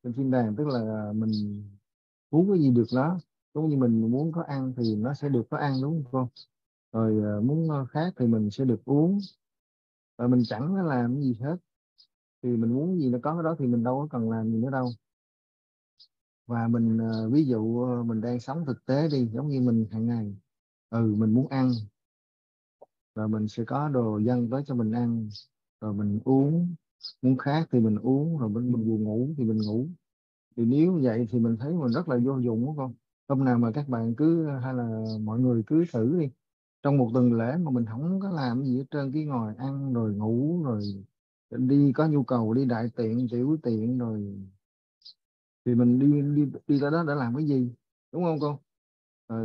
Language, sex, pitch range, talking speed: Vietnamese, male, 110-140 Hz, 205 wpm